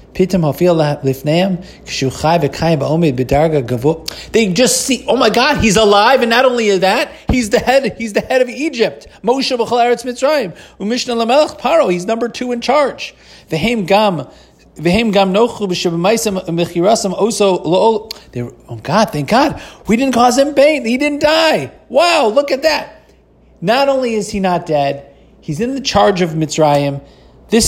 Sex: male